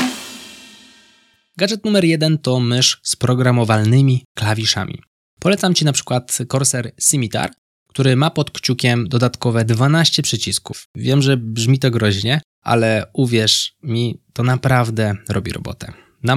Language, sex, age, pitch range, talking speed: Polish, male, 20-39, 105-140 Hz, 125 wpm